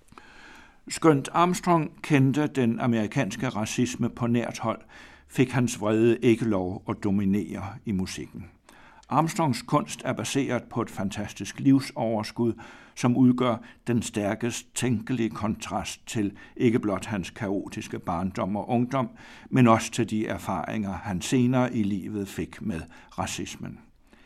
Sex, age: male, 60-79